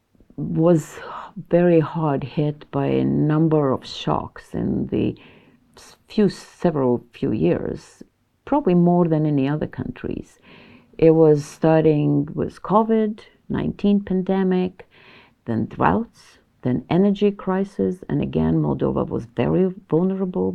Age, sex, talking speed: 50-69, female, 115 wpm